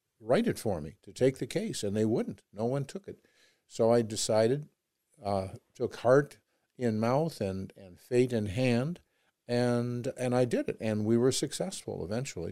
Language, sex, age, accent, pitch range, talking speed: English, male, 50-69, American, 110-140 Hz, 180 wpm